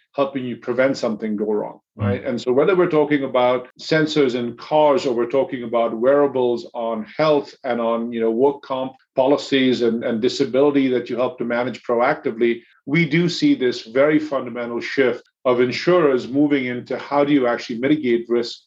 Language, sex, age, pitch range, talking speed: English, male, 50-69, 120-140 Hz, 180 wpm